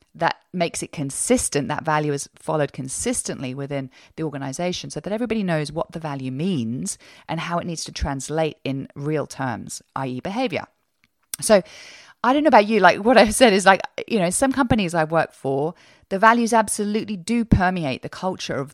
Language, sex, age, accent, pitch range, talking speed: English, female, 30-49, British, 140-205 Hz, 190 wpm